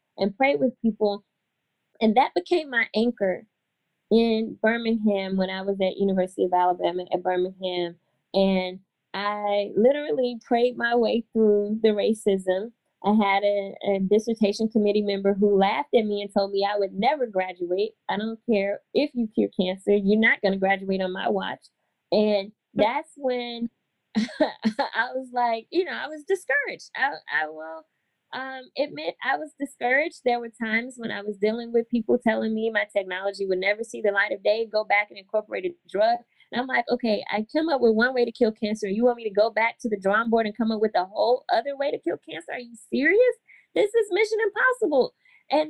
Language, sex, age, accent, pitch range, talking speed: English, female, 20-39, American, 200-250 Hz, 195 wpm